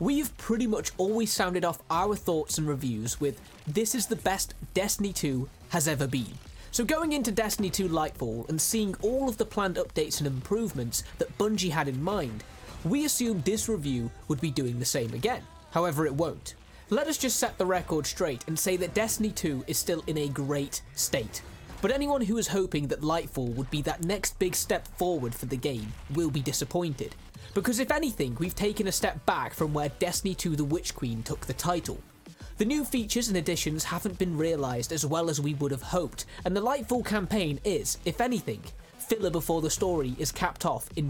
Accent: British